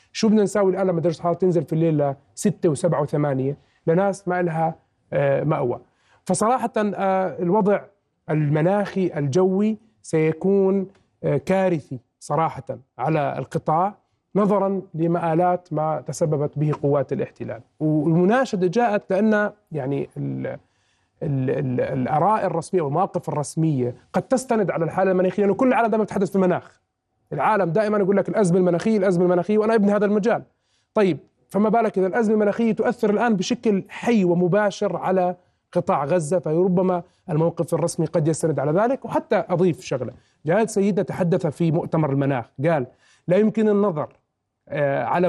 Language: Arabic